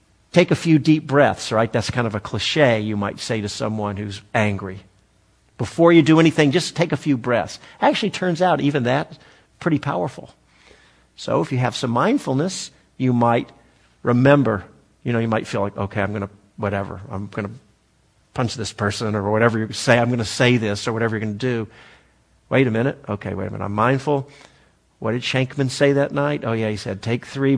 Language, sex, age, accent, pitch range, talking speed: English, male, 50-69, American, 105-140 Hz, 210 wpm